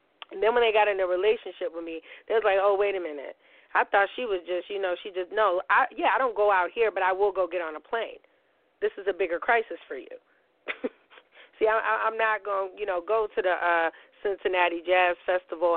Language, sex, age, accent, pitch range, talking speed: English, female, 30-49, American, 180-215 Hz, 235 wpm